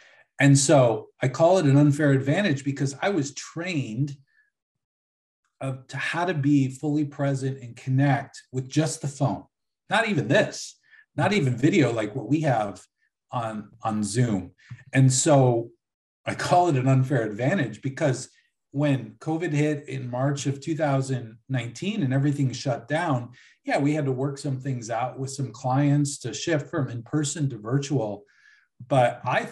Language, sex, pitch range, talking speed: English, male, 125-150 Hz, 155 wpm